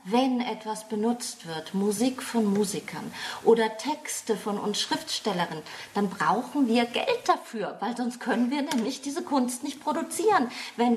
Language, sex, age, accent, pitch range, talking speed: German, female, 30-49, German, 170-235 Hz, 150 wpm